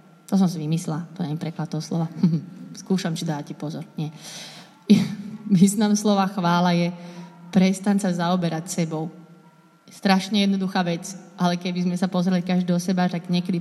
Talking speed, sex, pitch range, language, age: 150 wpm, female, 175-200 Hz, Slovak, 20-39